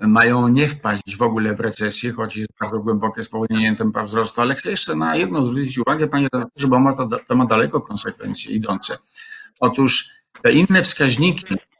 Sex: male